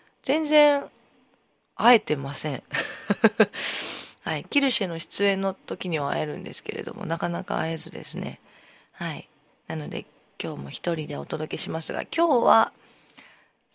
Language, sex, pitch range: Japanese, female, 160-230 Hz